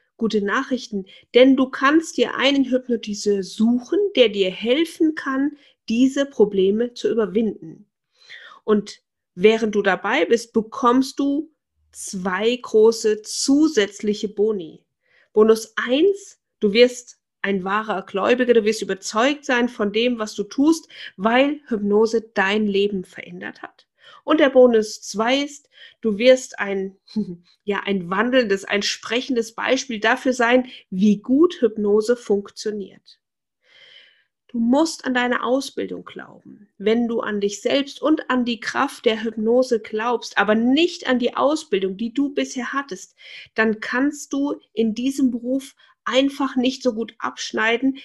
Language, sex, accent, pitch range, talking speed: German, female, German, 210-260 Hz, 135 wpm